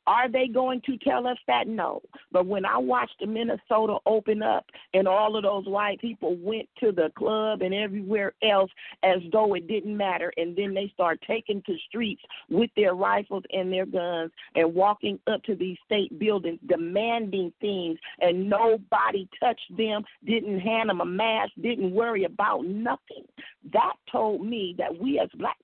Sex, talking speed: female, 180 wpm